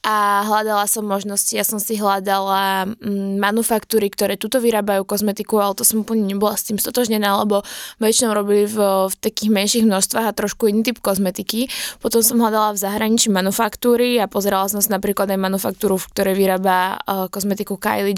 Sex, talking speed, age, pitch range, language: female, 170 wpm, 20-39, 195-220 Hz, Slovak